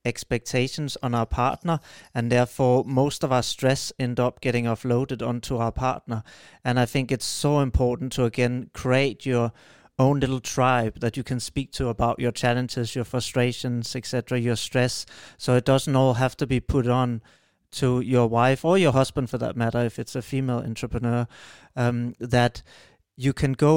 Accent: Danish